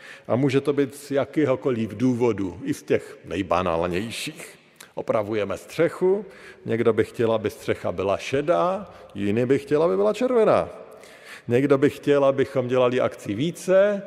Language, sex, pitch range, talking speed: Slovak, male, 115-170 Hz, 140 wpm